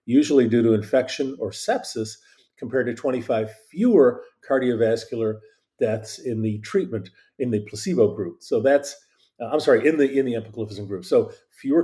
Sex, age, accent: male, 50-69, American